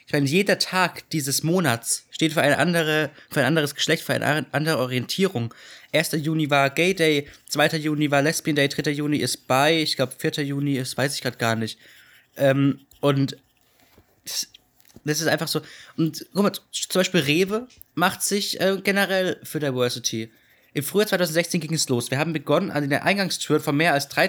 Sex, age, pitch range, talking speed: male, 20-39, 130-175 Hz, 180 wpm